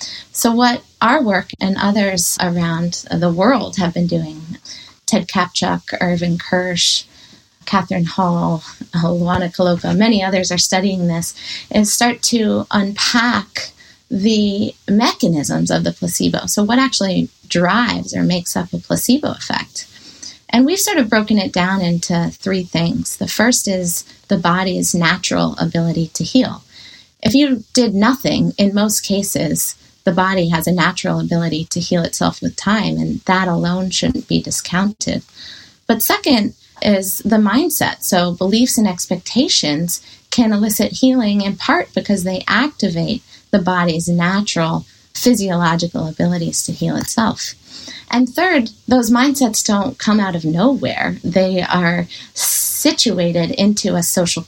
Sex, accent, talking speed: female, American, 140 wpm